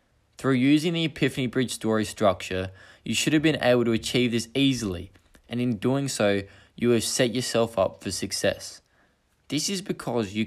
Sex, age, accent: male, 20-39, Australian